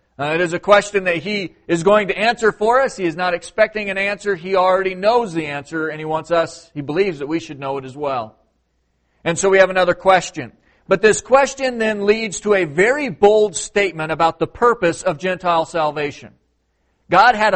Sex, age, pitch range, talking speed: male, 40-59, 140-185 Hz, 210 wpm